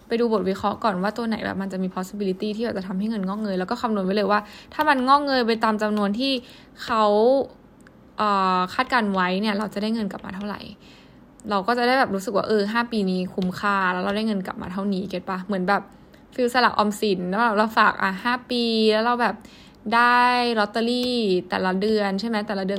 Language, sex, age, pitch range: Thai, female, 10-29, 195-235 Hz